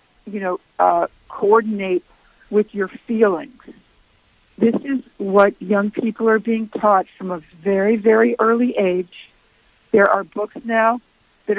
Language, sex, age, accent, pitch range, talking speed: English, female, 60-79, American, 185-225 Hz, 135 wpm